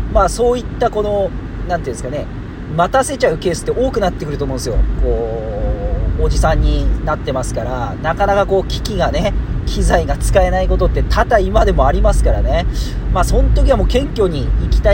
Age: 40-59